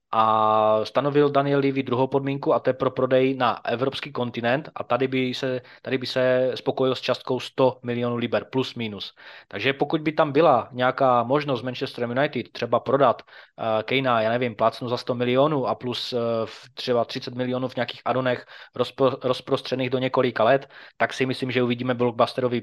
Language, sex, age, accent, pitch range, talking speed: Czech, male, 20-39, native, 120-135 Hz, 180 wpm